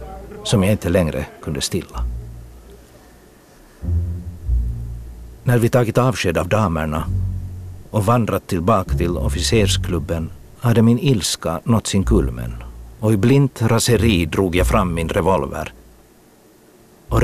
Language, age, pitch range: Swedish, 60-79, 75-100 Hz